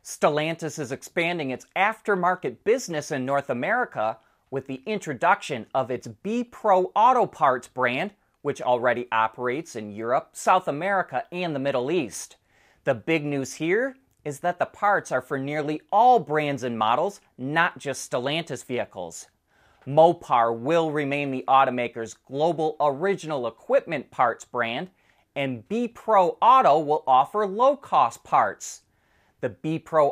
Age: 30-49